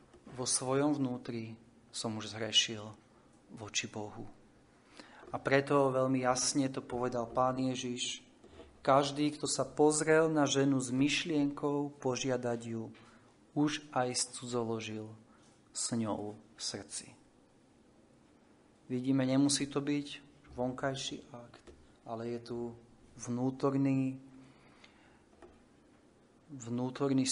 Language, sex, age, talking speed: Slovak, male, 30-49, 95 wpm